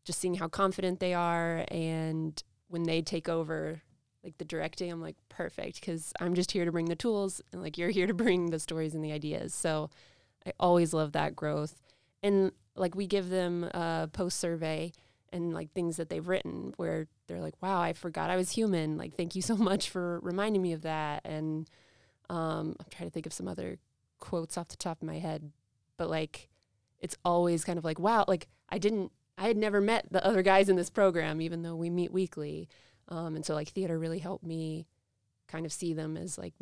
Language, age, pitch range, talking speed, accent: English, 20-39, 155-185 Hz, 215 wpm, American